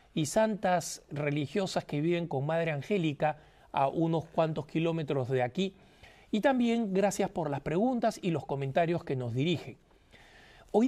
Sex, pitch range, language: male, 150-200 Hz, Spanish